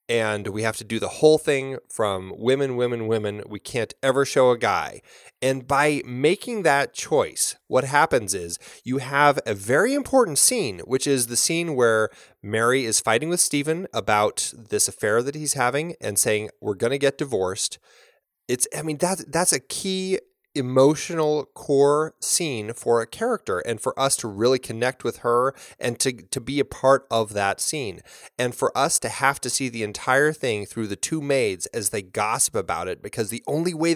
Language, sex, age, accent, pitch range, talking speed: English, male, 30-49, American, 110-140 Hz, 190 wpm